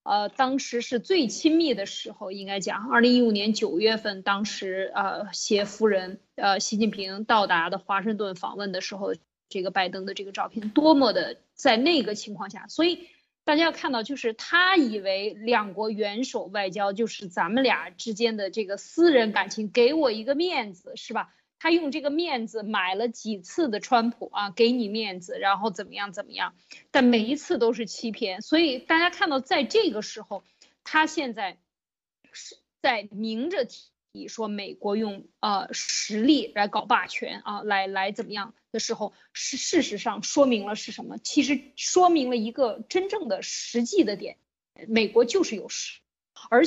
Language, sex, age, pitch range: Chinese, female, 20-39, 205-280 Hz